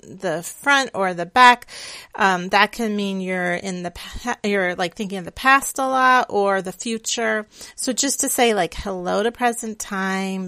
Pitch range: 190-235 Hz